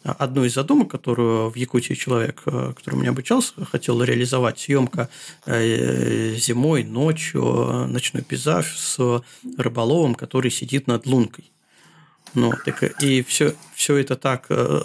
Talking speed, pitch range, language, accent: 120 wpm, 120-150 Hz, Russian, native